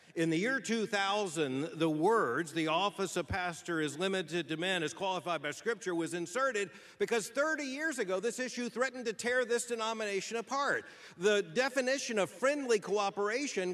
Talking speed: 160 wpm